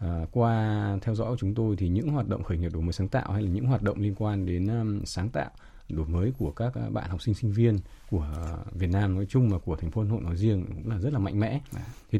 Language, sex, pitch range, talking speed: Vietnamese, male, 90-115 Hz, 290 wpm